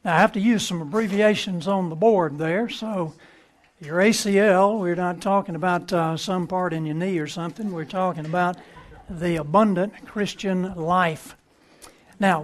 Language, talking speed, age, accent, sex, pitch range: English, 165 wpm, 60-79, American, male, 170-205 Hz